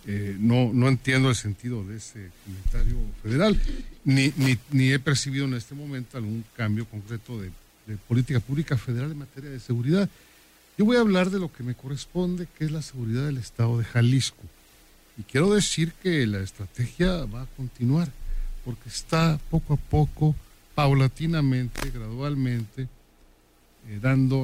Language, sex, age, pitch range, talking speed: Spanish, male, 50-69, 110-145 Hz, 160 wpm